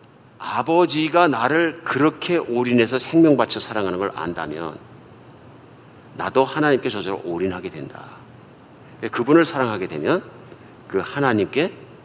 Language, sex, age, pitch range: Korean, male, 50-69, 105-150 Hz